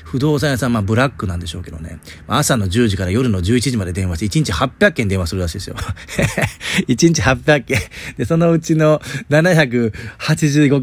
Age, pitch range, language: 40-59, 100-155 Hz, Japanese